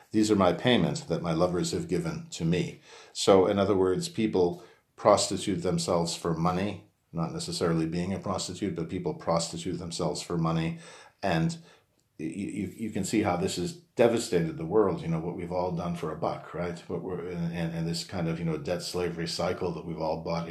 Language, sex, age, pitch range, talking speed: English, male, 40-59, 85-110 Hz, 195 wpm